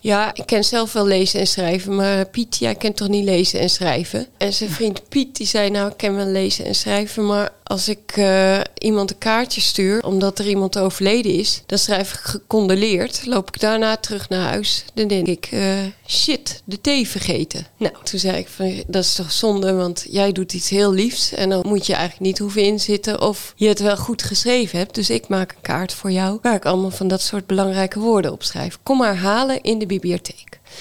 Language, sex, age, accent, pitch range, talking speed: Dutch, female, 30-49, Dutch, 180-210 Hz, 220 wpm